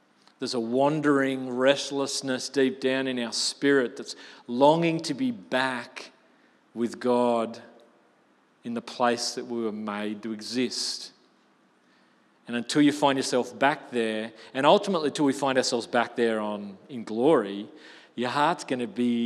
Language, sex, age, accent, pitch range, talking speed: English, male, 40-59, Australian, 115-140 Hz, 145 wpm